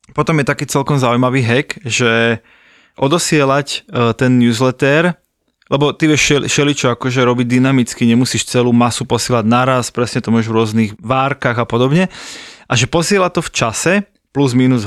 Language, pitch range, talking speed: Slovak, 125-165 Hz, 155 wpm